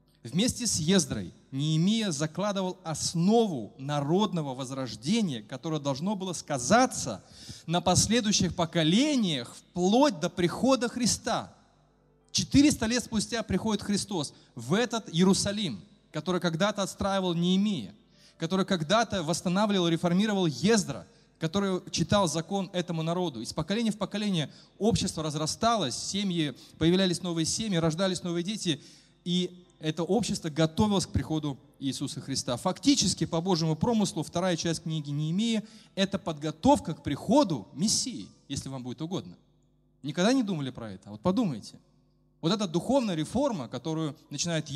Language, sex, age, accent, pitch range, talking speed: Russian, male, 30-49, native, 145-195 Hz, 125 wpm